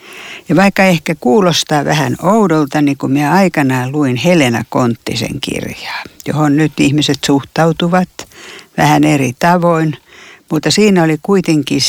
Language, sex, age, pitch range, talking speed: Finnish, female, 60-79, 135-180 Hz, 125 wpm